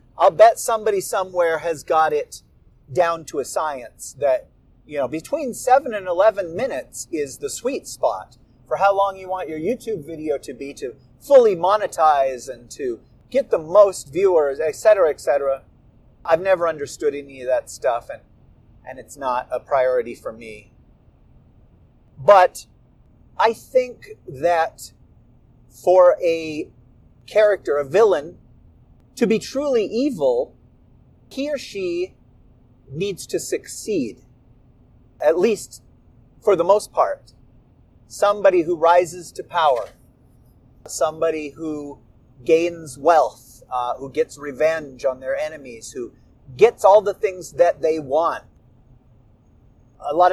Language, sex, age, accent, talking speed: English, male, 40-59, American, 135 wpm